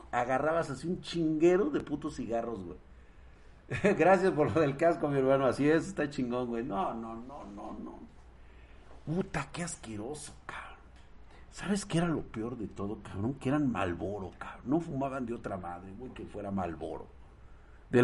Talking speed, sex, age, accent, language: 175 wpm, male, 50-69, Mexican, Spanish